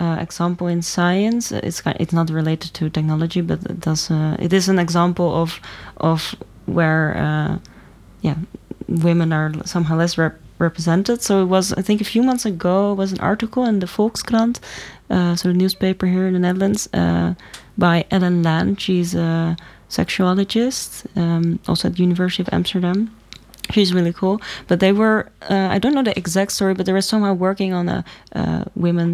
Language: English